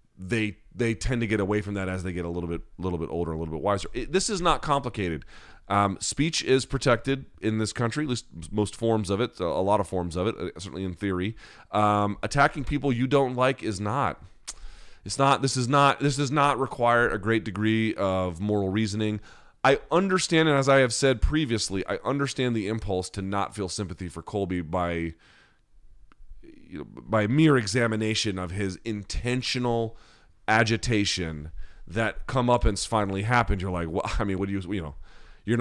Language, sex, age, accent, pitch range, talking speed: English, male, 30-49, American, 95-125 Hz, 190 wpm